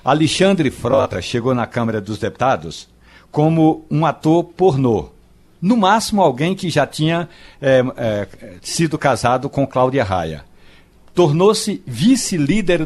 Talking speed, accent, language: 110 wpm, Brazilian, Portuguese